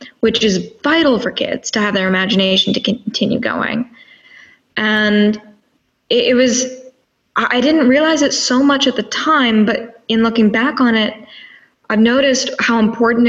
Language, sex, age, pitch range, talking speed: English, female, 10-29, 200-235 Hz, 155 wpm